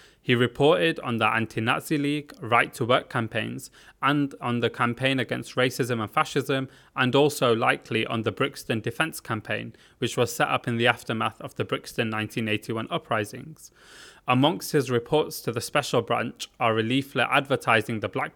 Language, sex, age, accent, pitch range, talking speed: English, male, 20-39, British, 120-145 Hz, 165 wpm